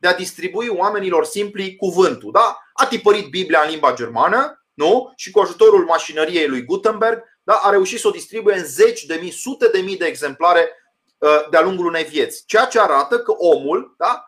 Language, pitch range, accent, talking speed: Romanian, 180-255 Hz, native, 190 wpm